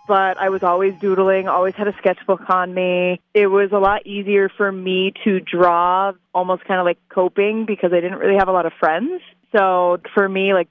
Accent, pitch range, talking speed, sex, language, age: American, 180-220 Hz, 215 wpm, female, English, 20-39